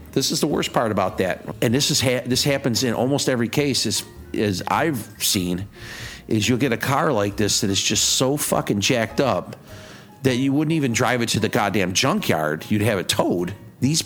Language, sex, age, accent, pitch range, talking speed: English, male, 50-69, American, 105-135 Hz, 215 wpm